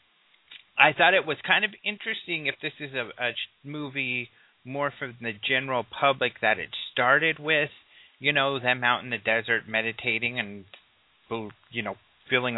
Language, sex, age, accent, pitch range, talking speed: English, male, 30-49, American, 115-140 Hz, 160 wpm